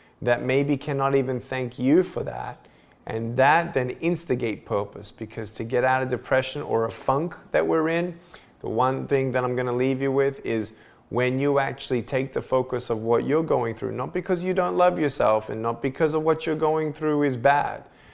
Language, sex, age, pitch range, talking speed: English, male, 20-39, 110-145 Hz, 205 wpm